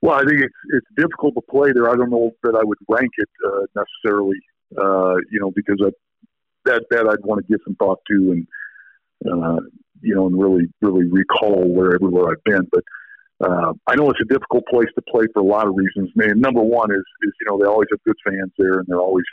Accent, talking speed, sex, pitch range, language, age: American, 235 wpm, male, 95-115 Hz, English, 50-69